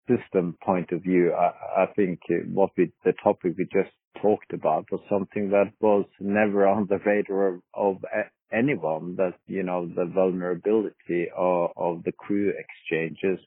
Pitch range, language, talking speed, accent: 90-105 Hz, English, 160 wpm, Norwegian